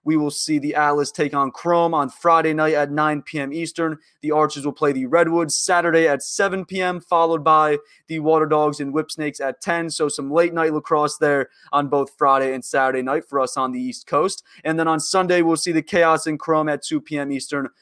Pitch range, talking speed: 140-165 Hz, 220 wpm